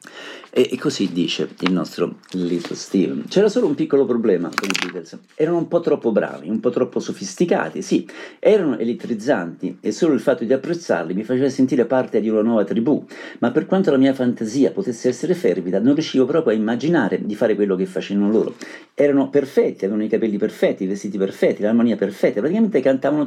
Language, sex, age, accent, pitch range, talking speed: Italian, male, 50-69, native, 110-150 Hz, 190 wpm